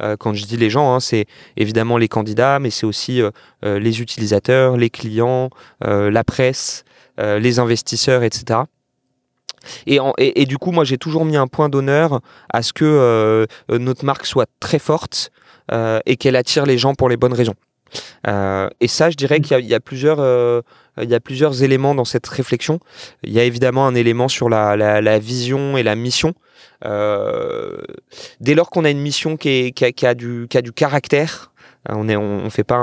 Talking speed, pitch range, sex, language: 205 wpm, 115-145 Hz, male, French